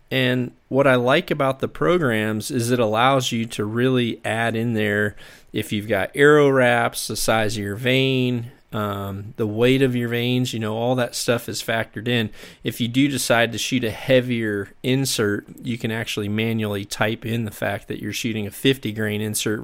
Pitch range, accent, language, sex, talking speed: 110-130 Hz, American, English, male, 195 wpm